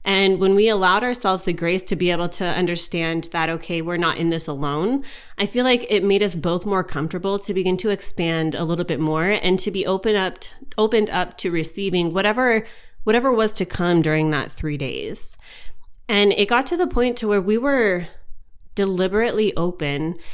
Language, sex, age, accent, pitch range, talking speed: English, female, 20-39, American, 170-215 Hz, 200 wpm